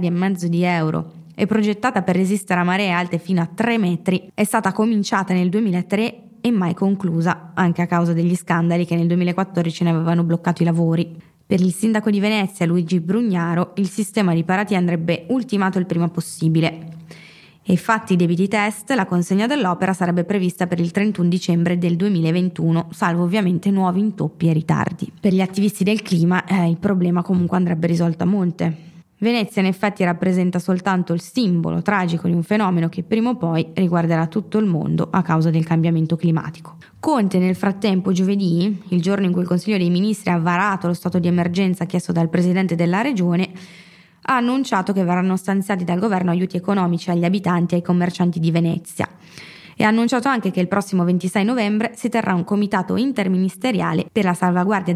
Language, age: Italian, 20-39